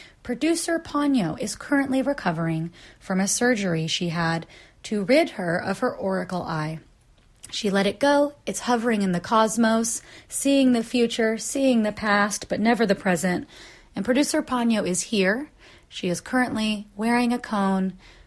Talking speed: 155 wpm